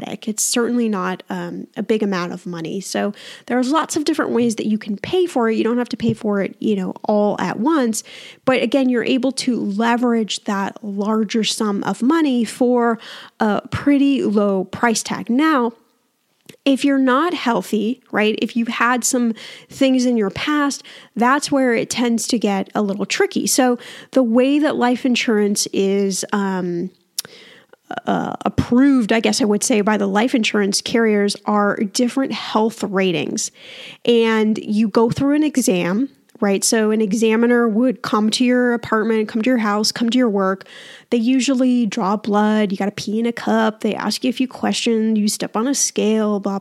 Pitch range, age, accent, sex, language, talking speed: 210-250 Hz, 10-29, American, female, English, 185 wpm